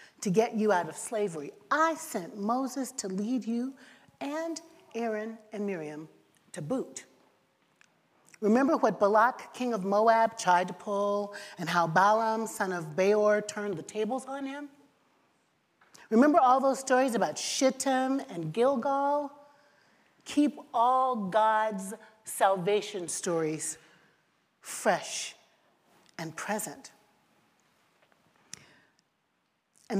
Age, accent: 40-59, American